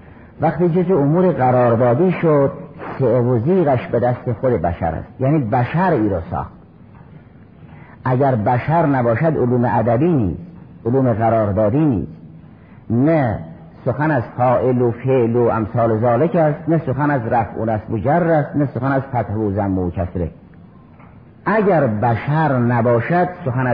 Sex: male